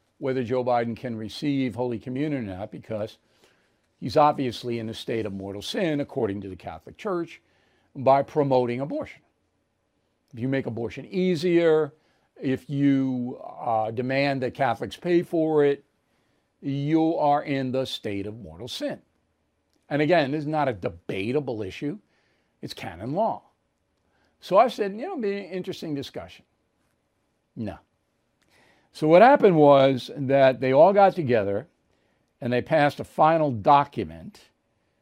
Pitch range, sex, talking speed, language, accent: 115-150 Hz, male, 145 wpm, English, American